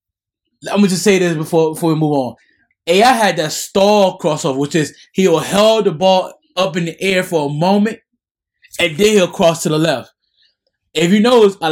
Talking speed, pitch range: 200 wpm, 155-195 Hz